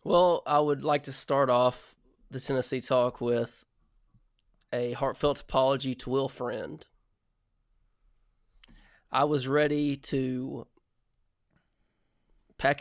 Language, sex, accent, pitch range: English, male, American, 125-155 Hz